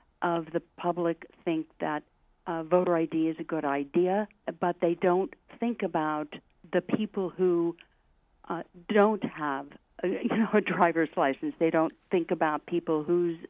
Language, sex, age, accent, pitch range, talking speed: English, female, 50-69, American, 160-185 Hz, 155 wpm